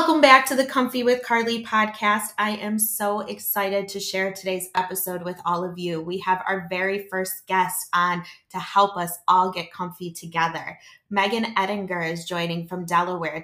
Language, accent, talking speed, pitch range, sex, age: English, American, 180 wpm, 175-200 Hz, female, 20-39